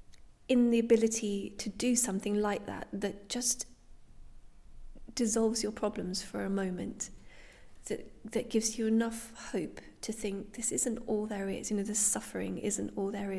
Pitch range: 195-230 Hz